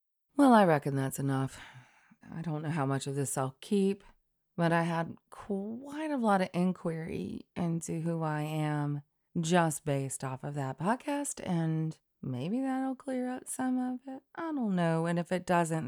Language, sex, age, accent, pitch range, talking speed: English, female, 30-49, American, 150-200 Hz, 180 wpm